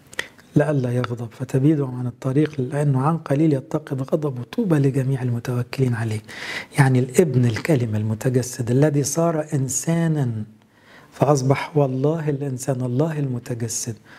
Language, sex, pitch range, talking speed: English, male, 125-150 Hz, 110 wpm